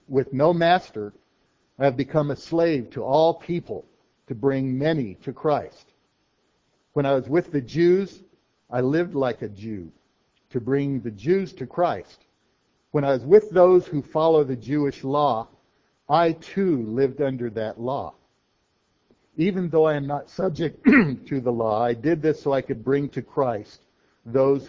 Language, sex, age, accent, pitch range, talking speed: English, male, 60-79, American, 125-155 Hz, 165 wpm